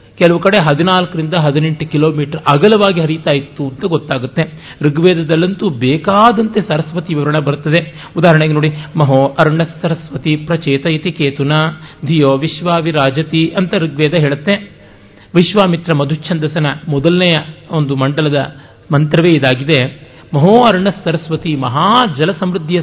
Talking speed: 105 wpm